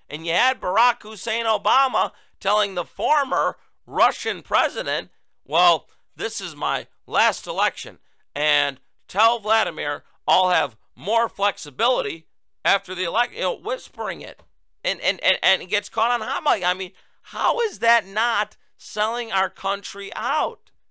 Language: English